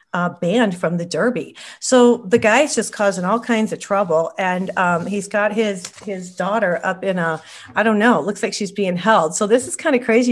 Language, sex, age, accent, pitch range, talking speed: English, female, 40-59, American, 165-220 Hz, 220 wpm